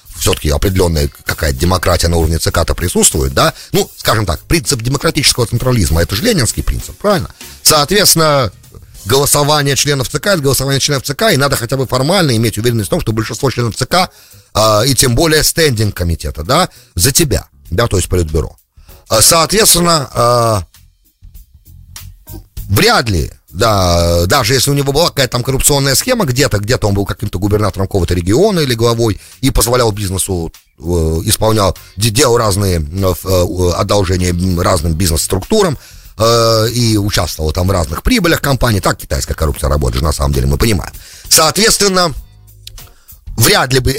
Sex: male